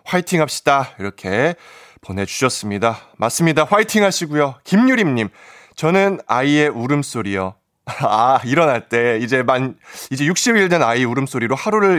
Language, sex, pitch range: Korean, male, 115-195 Hz